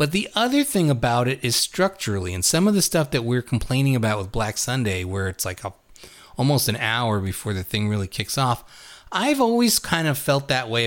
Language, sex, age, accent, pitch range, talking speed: English, male, 30-49, American, 110-155 Hz, 215 wpm